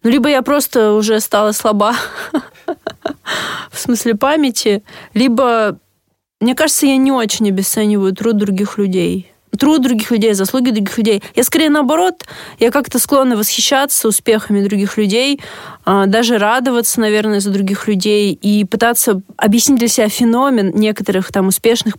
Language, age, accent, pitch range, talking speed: Russian, 20-39, native, 200-235 Hz, 140 wpm